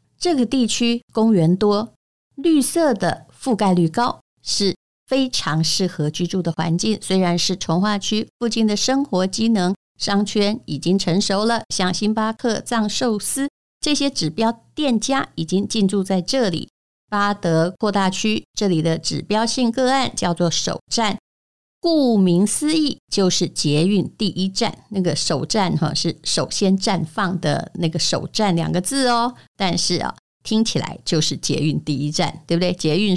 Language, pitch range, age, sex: Chinese, 175-230 Hz, 50-69, female